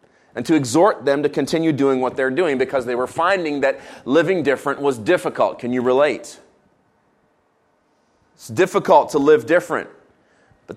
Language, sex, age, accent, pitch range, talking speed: English, male, 30-49, American, 135-175 Hz, 155 wpm